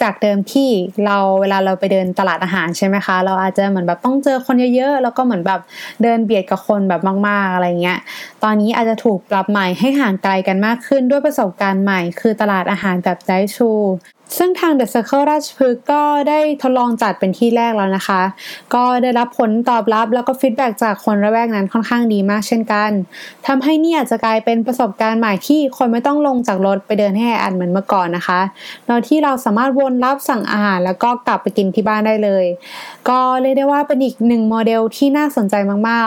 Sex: female